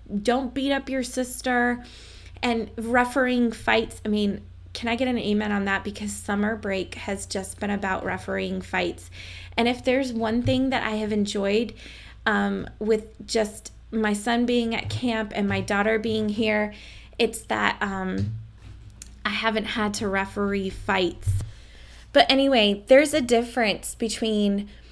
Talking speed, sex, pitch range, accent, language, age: 150 wpm, female, 200-235 Hz, American, English, 20-39